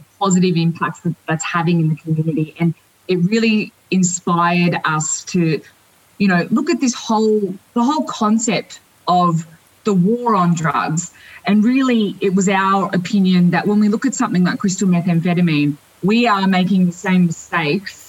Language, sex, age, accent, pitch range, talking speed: English, female, 20-39, Australian, 170-205 Hz, 165 wpm